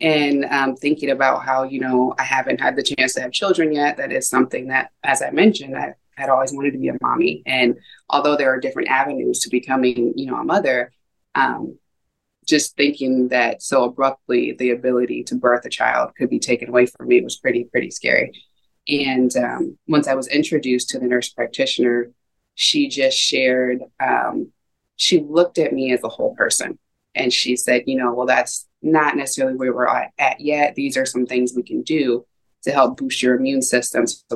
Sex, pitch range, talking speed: female, 125-145 Hz, 200 wpm